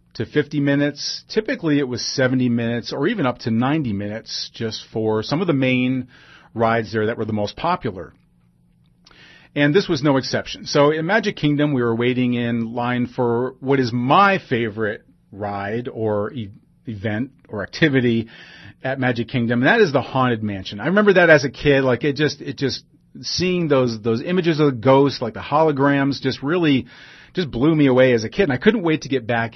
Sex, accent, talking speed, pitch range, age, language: male, American, 200 wpm, 120-150 Hz, 40-59, English